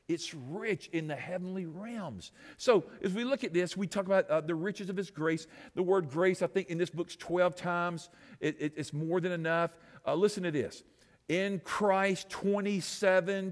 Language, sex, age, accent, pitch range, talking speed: English, male, 50-69, American, 155-195 Hz, 195 wpm